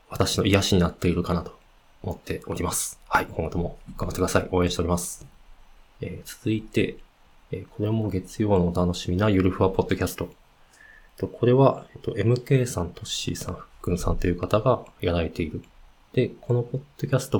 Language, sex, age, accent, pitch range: Japanese, male, 20-39, native, 90-120 Hz